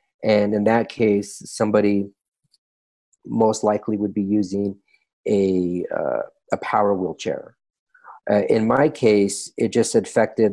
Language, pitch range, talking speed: English, 100-115 Hz, 125 wpm